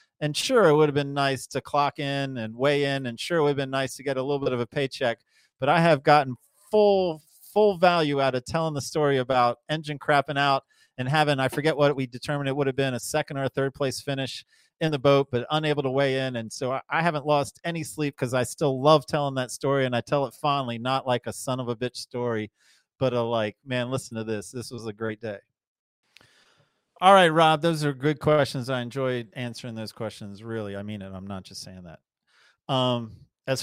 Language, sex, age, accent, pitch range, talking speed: English, male, 40-59, American, 120-150 Hz, 235 wpm